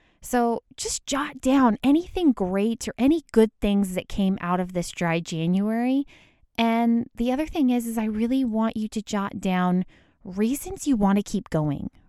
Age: 20-39